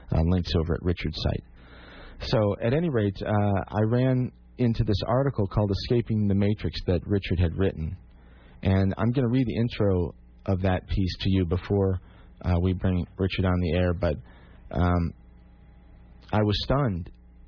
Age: 40-59